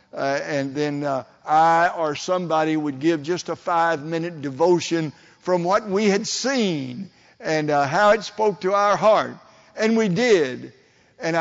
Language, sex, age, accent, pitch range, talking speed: English, male, 60-79, American, 150-205 Hz, 160 wpm